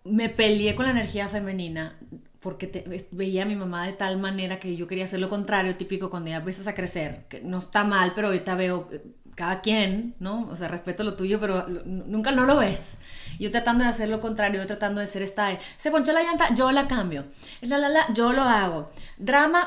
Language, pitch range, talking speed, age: Spanish, 190-235 Hz, 225 wpm, 30-49